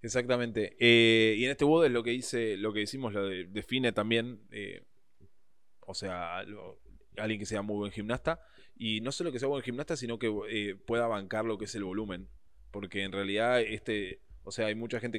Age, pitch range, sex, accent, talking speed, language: 20-39, 105-125 Hz, male, Argentinian, 200 wpm, Spanish